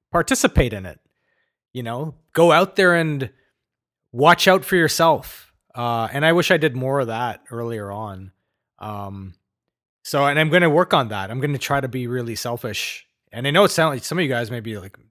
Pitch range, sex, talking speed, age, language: 115-155 Hz, male, 205 wpm, 30-49, English